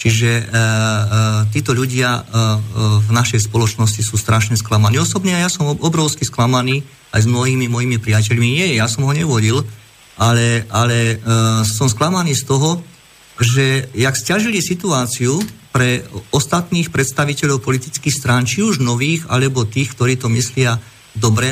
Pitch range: 110-140 Hz